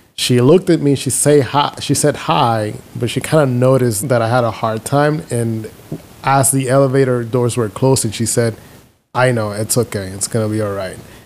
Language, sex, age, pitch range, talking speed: English, male, 20-39, 110-140 Hz, 210 wpm